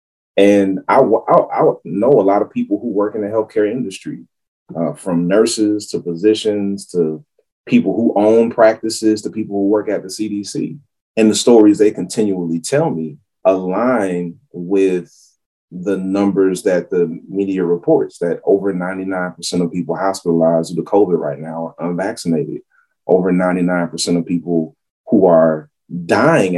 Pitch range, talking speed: 85-110 Hz, 155 wpm